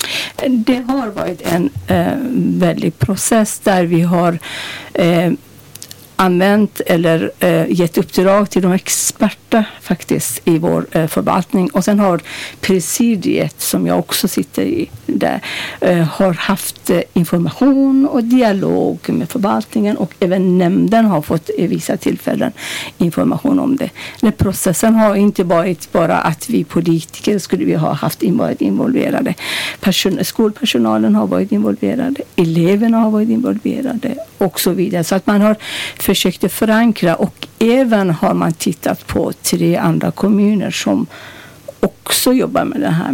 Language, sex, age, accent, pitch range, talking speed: English, female, 60-79, Swedish, 175-220 Hz, 130 wpm